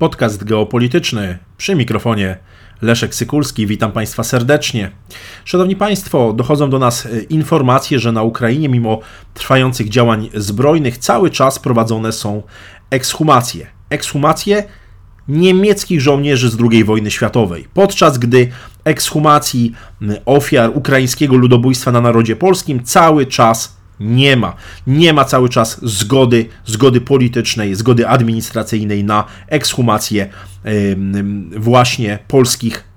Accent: native